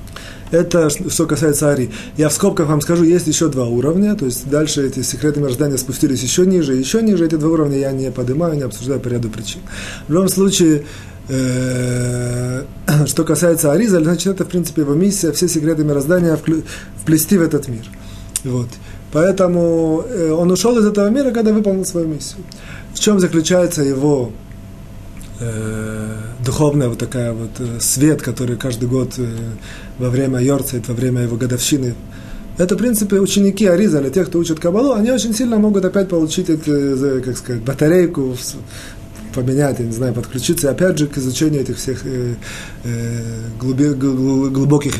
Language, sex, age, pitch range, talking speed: Russian, male, 30-49, 125-175 Hz, 155 wpm